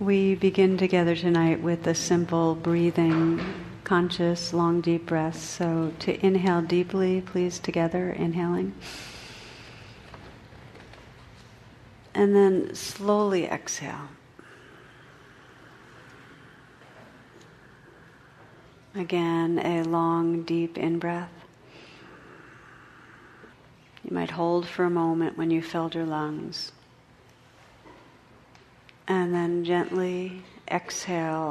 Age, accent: 50-69, American